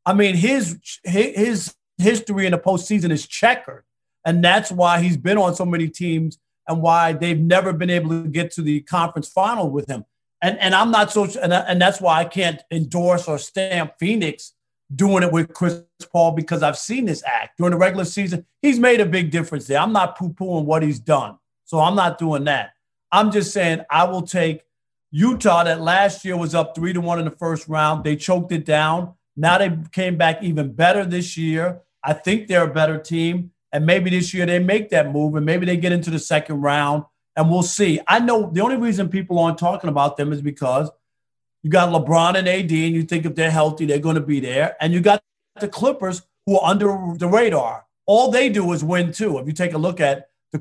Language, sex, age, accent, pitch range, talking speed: English, male, 40-59, American, 155-185 Hz, 220 wpm